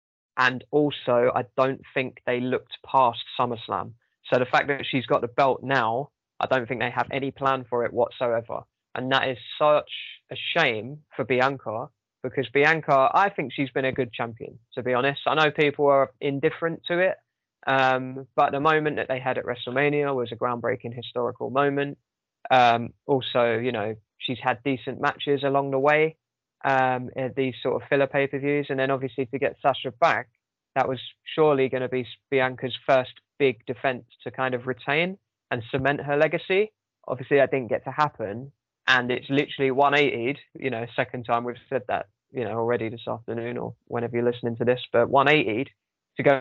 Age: 20-39